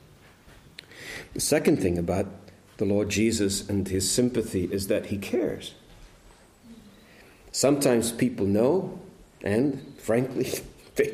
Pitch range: 100-135 Hz